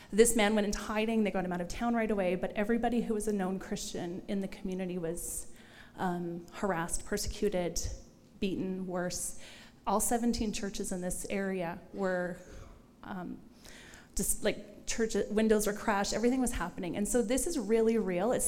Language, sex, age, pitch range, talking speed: English, female, 30-49, 200-245 Hz, 170 wpm